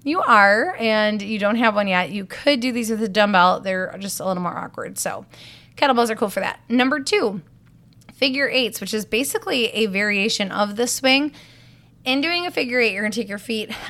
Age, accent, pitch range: 20-39, American, 195-245 Hz